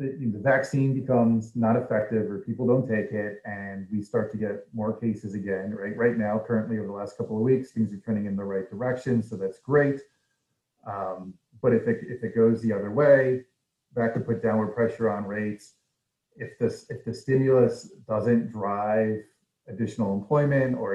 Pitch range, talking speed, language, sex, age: 100-120 Hz, 185 wpm, English, male, 30-49